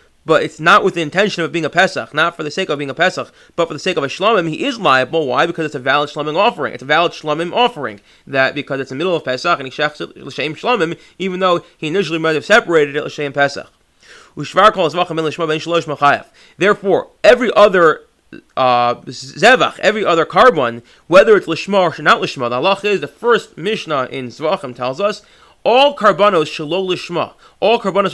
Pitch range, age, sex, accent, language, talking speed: 140-190 Hz, 30-49, male, American, English, 195 wpm